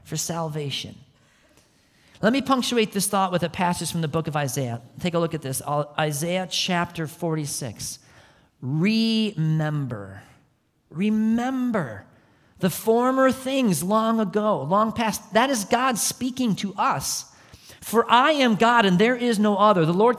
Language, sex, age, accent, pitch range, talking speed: English, male, 40-59, American, 130-200 Hz, 145 wpm